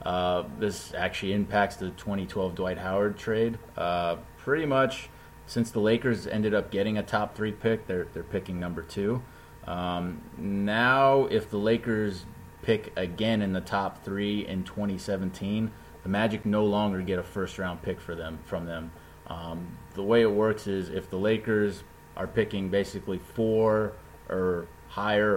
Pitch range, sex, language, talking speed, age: 90-105 Hz, male, English, 160 wpm, 30-49